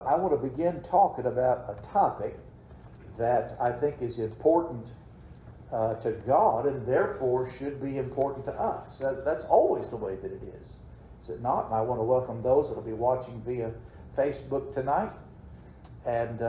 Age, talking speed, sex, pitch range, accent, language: 50-69, 170 wpm, male, 120-160 Hz, American, English